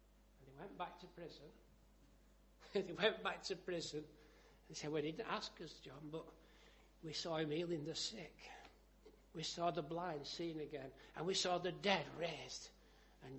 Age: 60-79